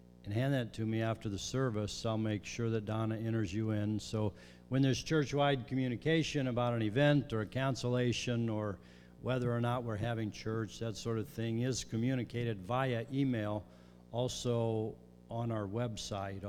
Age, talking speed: 50-69, 165 wpm